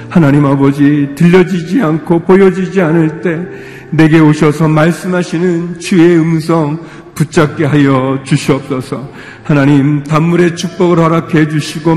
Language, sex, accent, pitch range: Korean, male, native, 135-165 Hz